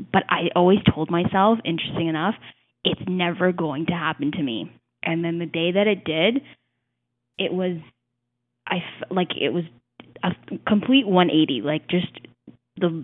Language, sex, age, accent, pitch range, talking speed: English, female, 10-29, American, 160-195 Hz, 155 wpm